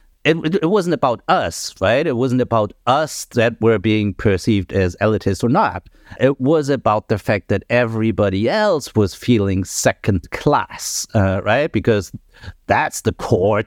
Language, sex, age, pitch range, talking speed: English, male, 50-69, 90-115 Hz, 160 wpm